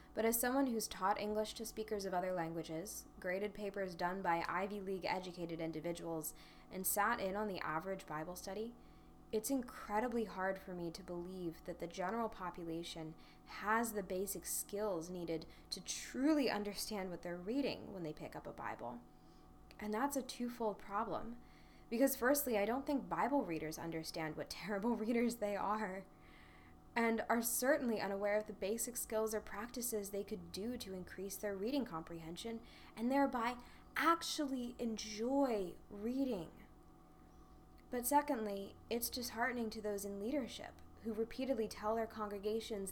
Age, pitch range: 10-29, 180-230 Hz